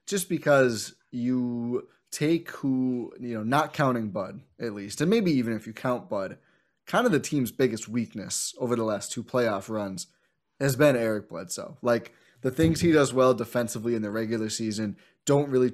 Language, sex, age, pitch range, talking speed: English, male, 20-39, 110-140 Hz, 185 wpm